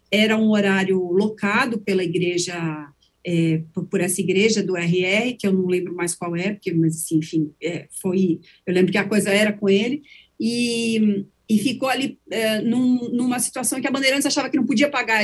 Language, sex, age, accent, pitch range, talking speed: Portuguese, female, 40-59, Brazilian, 195-250 Hz, 195 wpm